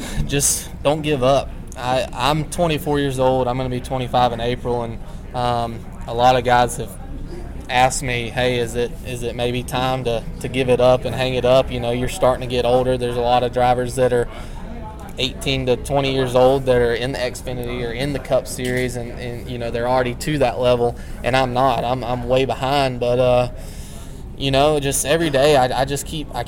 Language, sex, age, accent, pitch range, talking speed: English, male, 20-39, American, 125-135 Hz, 220 wpm